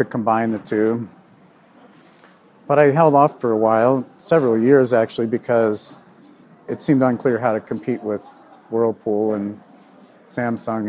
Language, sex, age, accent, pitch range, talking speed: English, male, 50-69, American, 110-135 Hz, 140 wpm